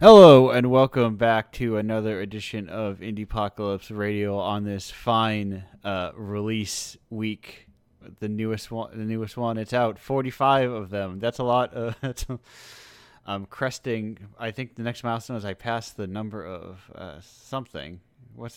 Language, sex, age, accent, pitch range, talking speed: English, male, 30-49, American, 95-115 Hz, 160 wpm